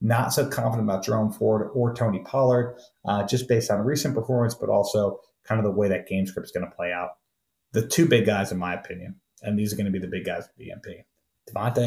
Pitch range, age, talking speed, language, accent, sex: 95-120 Hz, 30-49, 245 wpm, English, American, male